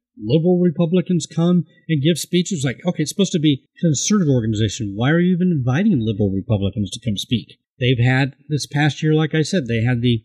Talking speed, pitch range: 205 wpm, 120-155 Hz